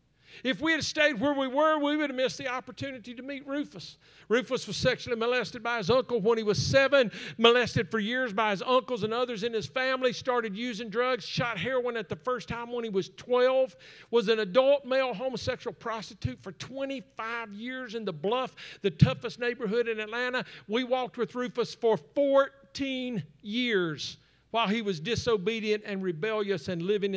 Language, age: English, 50-69